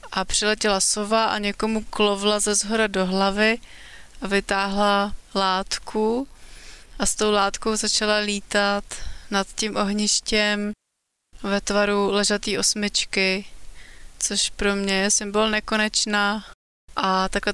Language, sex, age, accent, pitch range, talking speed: Czech, female, 20-39, native, 195-210 Hz, 115 wpm